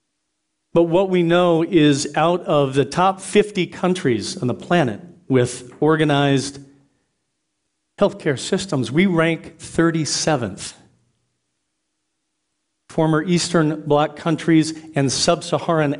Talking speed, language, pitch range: 105 wpm, English, 125-170 Hz